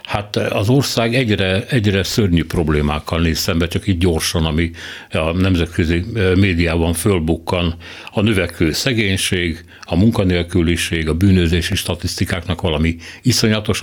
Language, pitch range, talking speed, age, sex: Hungarian, 85-100 Hz, 115 wpm, 60-79, male